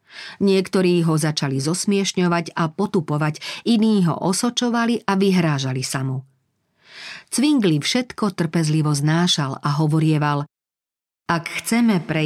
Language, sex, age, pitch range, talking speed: Slovak, female, 40-59, 155-200 Hz, 105 wpm